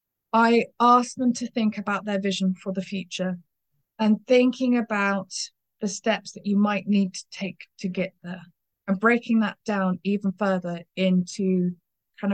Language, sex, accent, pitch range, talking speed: English, female, British, 180-200 Hz, 160 wpm